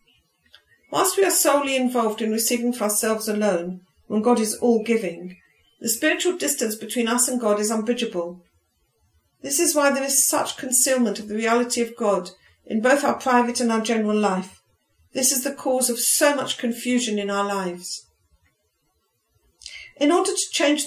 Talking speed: 165 wpm